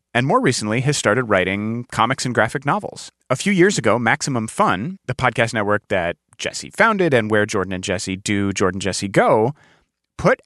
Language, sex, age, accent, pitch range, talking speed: English, male, 30-49, American, 100-125 Hz, 185 wpm